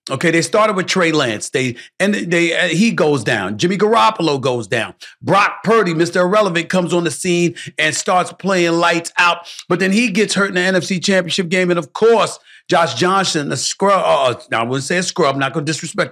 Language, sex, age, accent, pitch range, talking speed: English, male, 40-59, American, 160-190 Hz, 215 wpm